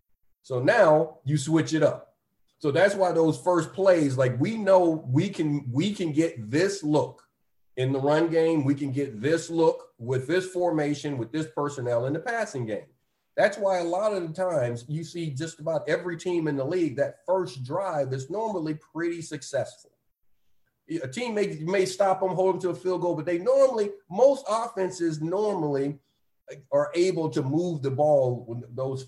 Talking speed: 185 wpm